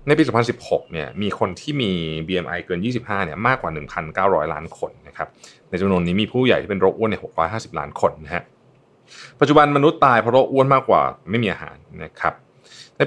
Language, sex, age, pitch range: Thai, male, 20-39, 85-120 Hz